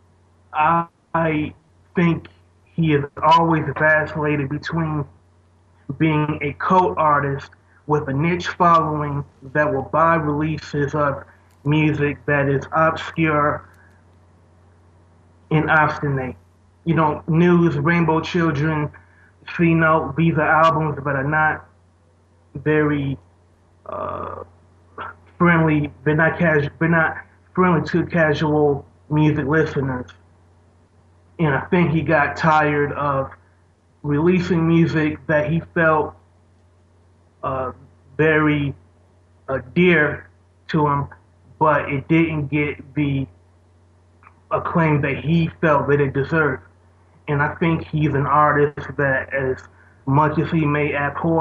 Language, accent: English, American